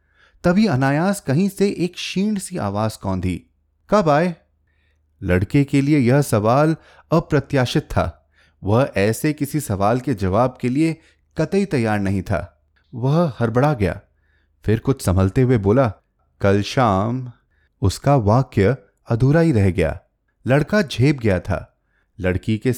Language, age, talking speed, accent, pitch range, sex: Hindi, 30-49, 135 wpm, native, 95-145 Hz, male